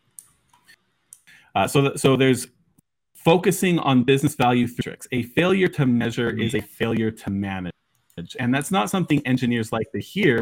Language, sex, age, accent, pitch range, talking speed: English, male, 30-49, American, 110-140 Hz, 155 wpm